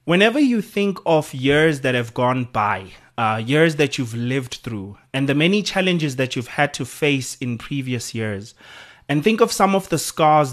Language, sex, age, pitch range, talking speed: English, male, 30-49, 130-170 Hz, 195 wpm